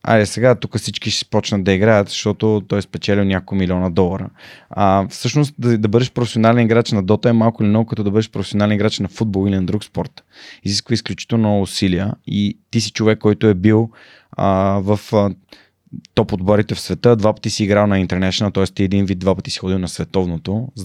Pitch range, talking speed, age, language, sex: 100-110 Hz, 210 wpm, 20-39, Bulgarian, male